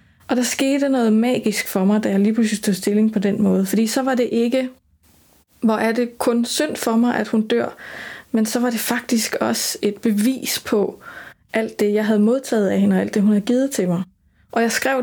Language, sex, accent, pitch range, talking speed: Danish, female, native, 190-230 Hz, 230 wpm